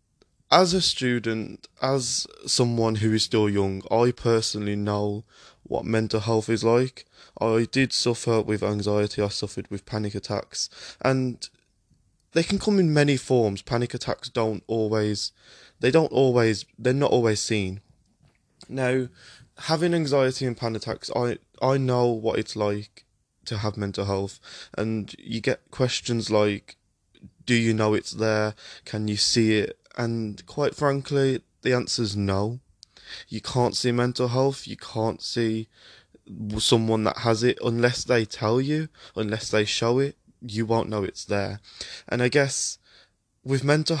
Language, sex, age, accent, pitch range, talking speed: English, male, 20-39, British, 105-130 Hz, 155 wpm